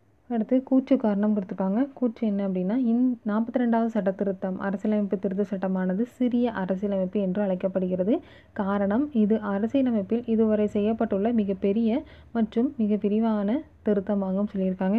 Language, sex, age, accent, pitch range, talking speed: Tamil, female, 20-39, native, 195-230 Hz, 120 wpm